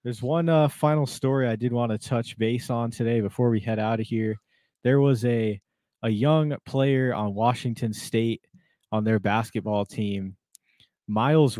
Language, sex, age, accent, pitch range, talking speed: English, male, 20-39, American, 105-130 Hz, 170 wpm